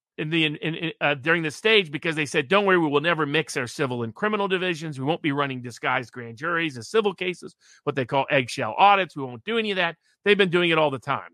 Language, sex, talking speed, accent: English, male, 245 wpm, American